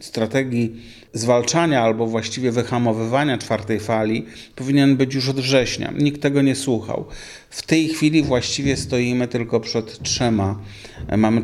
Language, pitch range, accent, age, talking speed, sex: Polish, 105-125 Hz, native, 40-59, 130 wpm, male